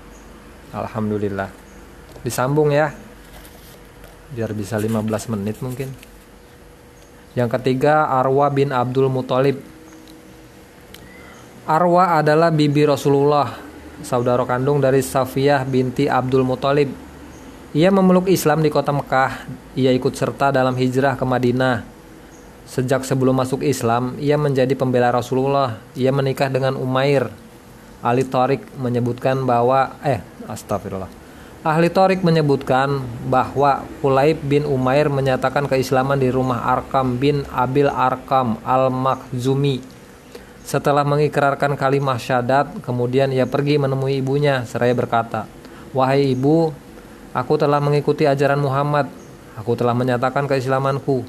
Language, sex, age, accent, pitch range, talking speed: Indonesian, male, 20-39, native, 120-140 Hz, 110 wpm